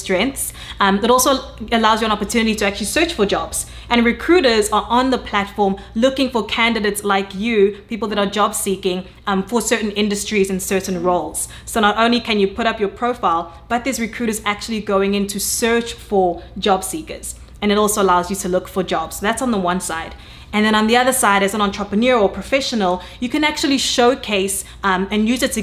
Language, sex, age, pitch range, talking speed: English, female, 20-39, 195-230 Hz, 210 wpm